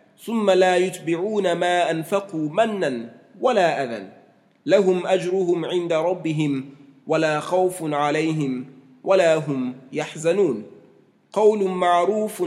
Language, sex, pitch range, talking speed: English, male, 160-190 Hz, 95 wpm